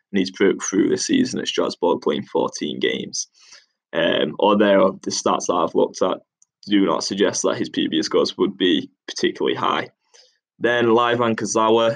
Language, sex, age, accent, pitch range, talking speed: English, male, 10-29, British, 105-115 Hz, 160 wpm